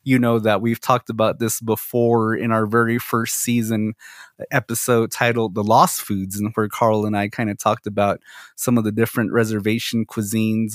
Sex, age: male, 20-39